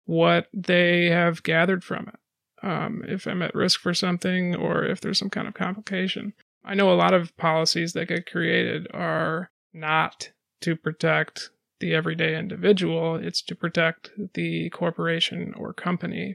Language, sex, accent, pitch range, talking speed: English, male, American, 165-185 Hz, 160 wpm